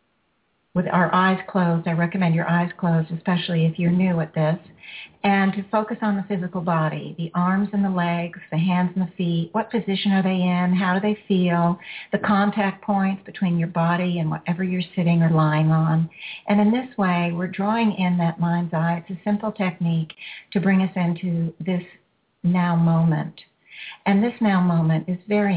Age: 50-69